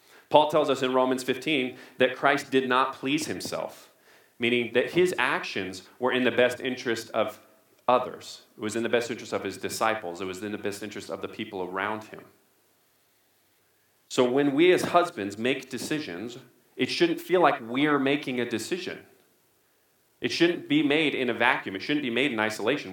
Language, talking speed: English, 185 wpm